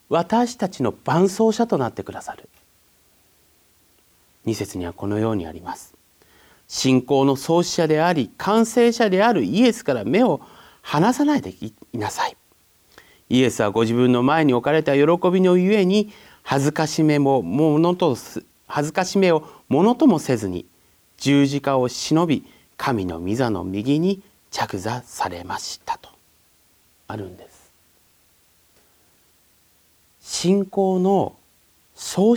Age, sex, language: 40-59, male, Japanese